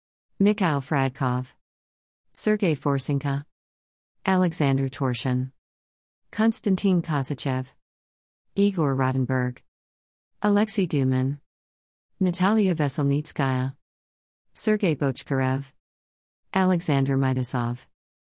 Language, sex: English, female